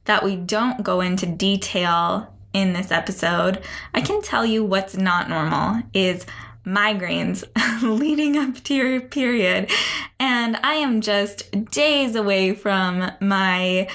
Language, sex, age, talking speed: English, female, 10-29, 130 wpm